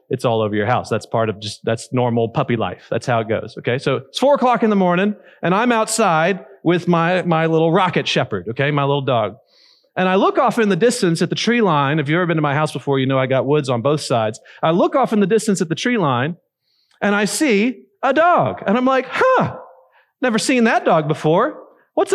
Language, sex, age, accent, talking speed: English, male, 40-59, American, 245 wpm